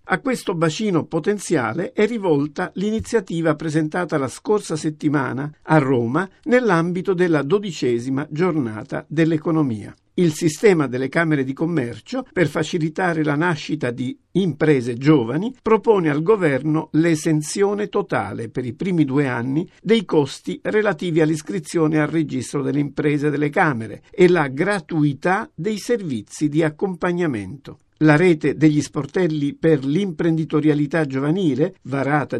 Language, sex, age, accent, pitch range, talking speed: Italian, male, 50-69, native, 145-180 Hz, 120 wpm